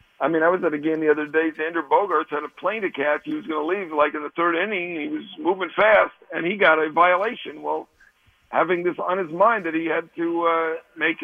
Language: English